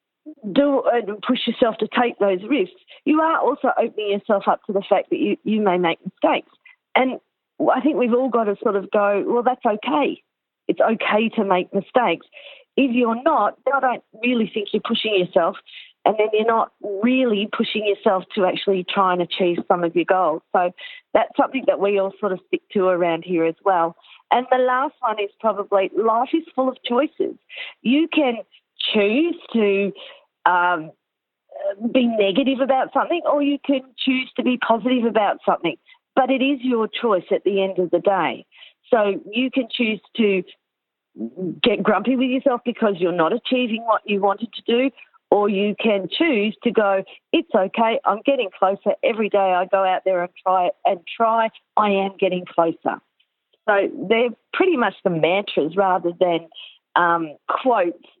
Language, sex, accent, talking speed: English, female, Australian, 180 wpm